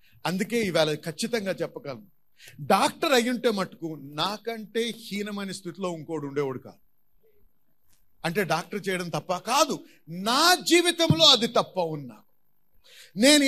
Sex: male